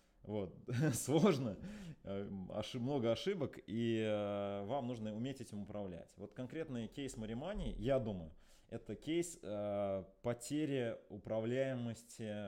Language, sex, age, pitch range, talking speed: Russian, male, 20-39, 95-125 Hz, 95 wpm